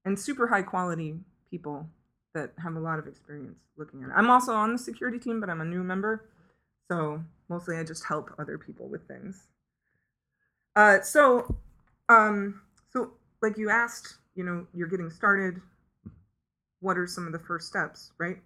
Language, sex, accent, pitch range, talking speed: English, female, American, 165-205 Hz, 170 wpm